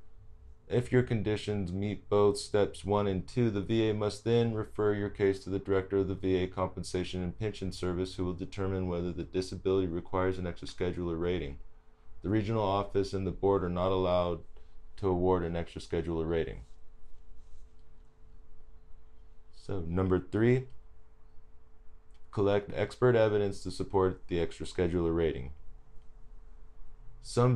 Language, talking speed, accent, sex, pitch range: English, 140 wpm, American, male, 85-95 Hz